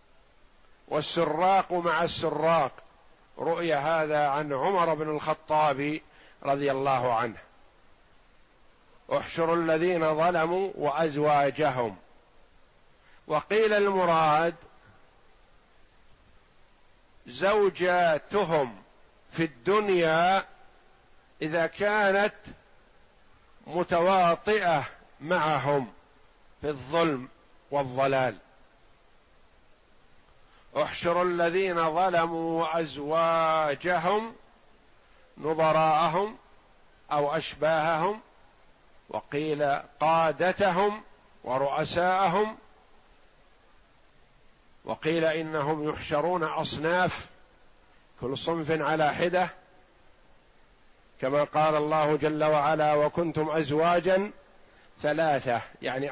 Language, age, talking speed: Arabic, 50-69, 60 wpm